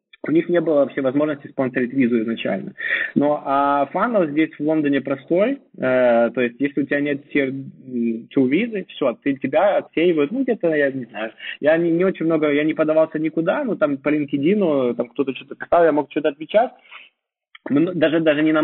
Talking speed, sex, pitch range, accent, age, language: 190 wpm, male, 120-155 Hz, native, 20-39, Russian